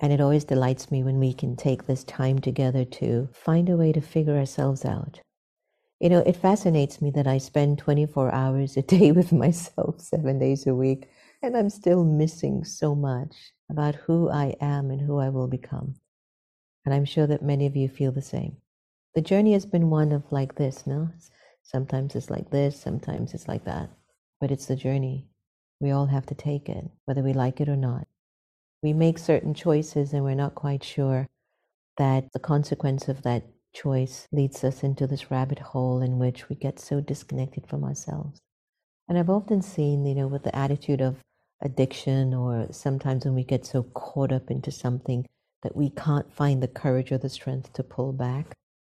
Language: English